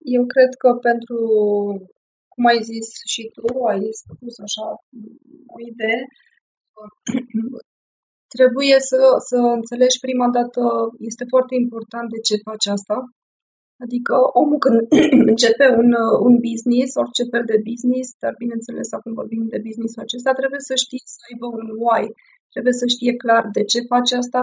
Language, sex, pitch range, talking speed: Romanian, female, 225-250 Hz, 145 wpm